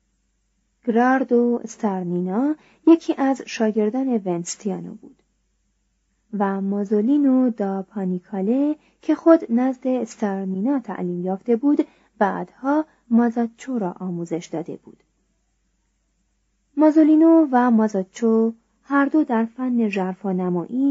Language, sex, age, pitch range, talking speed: Persian, female, 30-49, 195-265 Hz, 90 wpm